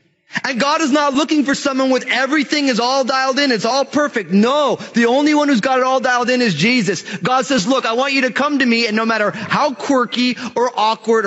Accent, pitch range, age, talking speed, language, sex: American, 195-255 Hz, 30-49, 240 wpm, English, male